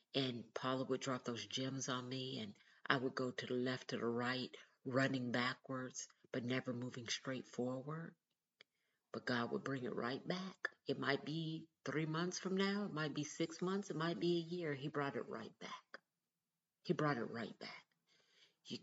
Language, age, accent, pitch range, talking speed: English, 50-69, American, 125-155 Hz, 190 wpm